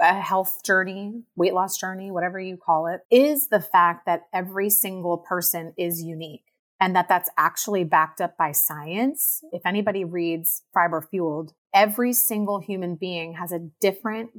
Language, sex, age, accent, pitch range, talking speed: English, female, 30-49, American, 170-220 Hz, 165 wpm